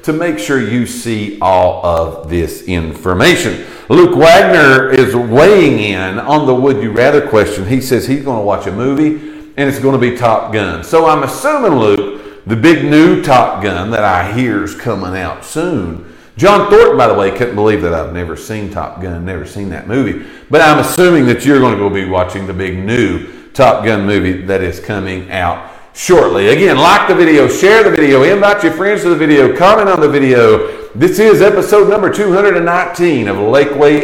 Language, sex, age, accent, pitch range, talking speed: English, male, 40-59, American, 105-165 Hz, 200 wpm